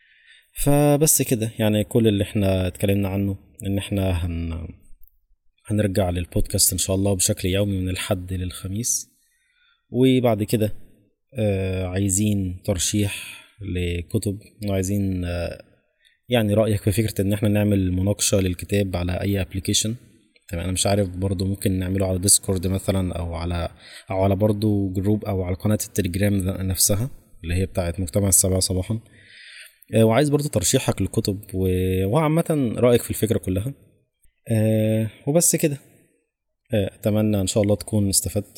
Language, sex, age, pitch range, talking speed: Arabic, male, 20-39, 95-110 Hz, 130 wpm